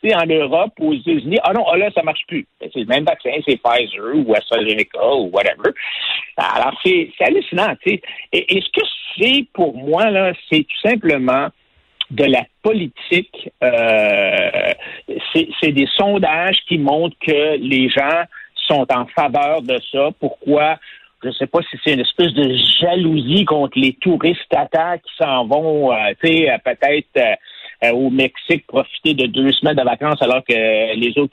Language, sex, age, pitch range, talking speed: French, male, 60-79, 140-230 Hz, 170 wpm